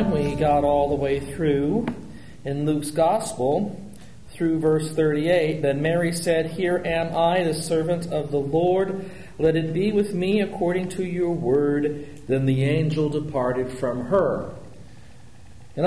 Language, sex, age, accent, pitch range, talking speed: English, male, 40-59, American, 120-160 Hz, 150 wpm